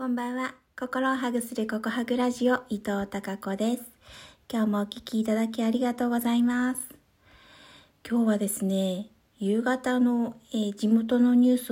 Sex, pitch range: female, 195-235 Hz